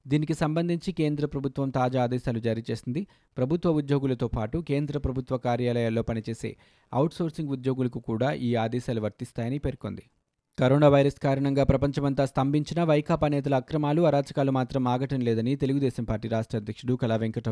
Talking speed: 135 wpm